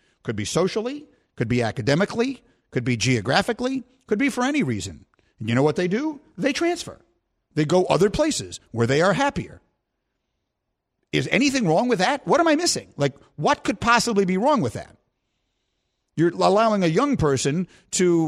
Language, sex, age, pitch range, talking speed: English, male, 50-69, 155-250 Hz, 175 wpm